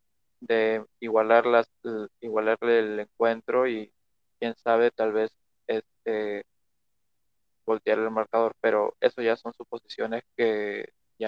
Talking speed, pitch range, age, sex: 110 wpm, 110-120 Hz, 20-39, male